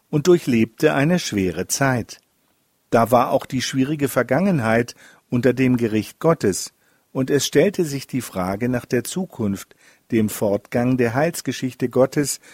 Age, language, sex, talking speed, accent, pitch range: 50-69, German, male, 140 wpm, German, 115-150 Hz